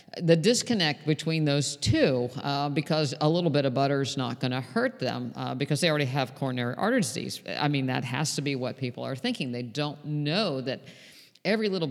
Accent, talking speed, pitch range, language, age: American, 210 wpm, 135-170 Hz, English, 50-69